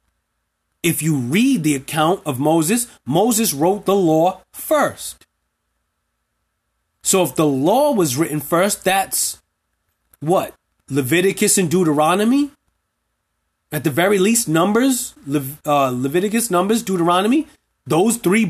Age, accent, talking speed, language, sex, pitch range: 30-49, American, 115 wpm, English, male, 155-225 Hz